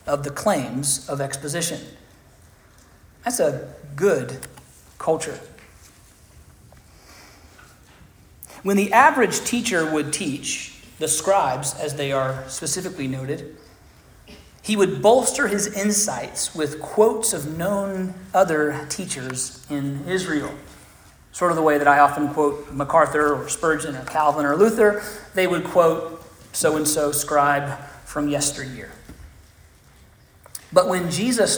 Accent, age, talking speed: American, 40-59, 115 wpm